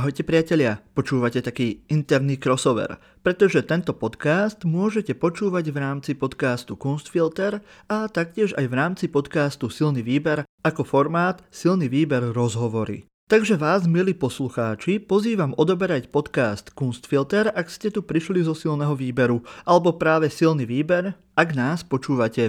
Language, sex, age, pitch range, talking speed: Slovak, male, 30-49, 130-185 Hz, 135 wpm